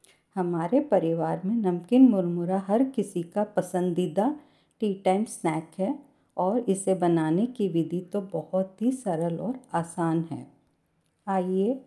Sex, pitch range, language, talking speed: female, 175-235 Hz, Hindi, 130 wpm